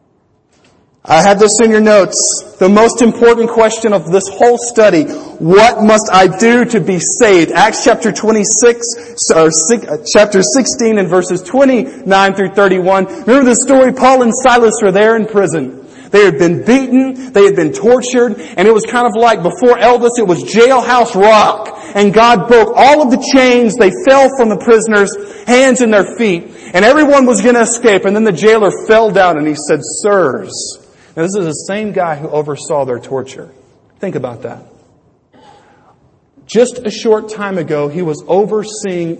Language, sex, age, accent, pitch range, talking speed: English, male, 40-59, American, 150-230 Hz, 180 wpm